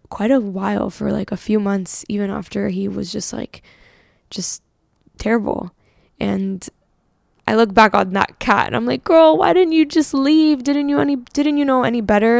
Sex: female